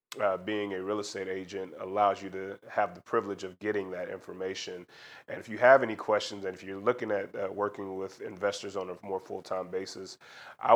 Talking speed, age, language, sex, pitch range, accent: 205 wpm, 30-49, English, male, 95-105 Hz, American